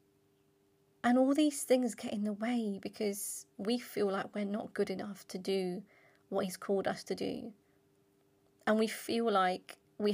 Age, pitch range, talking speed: 30-49, 195-240 Hz, 170 wpm